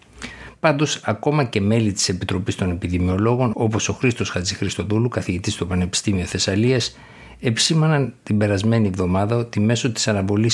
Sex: male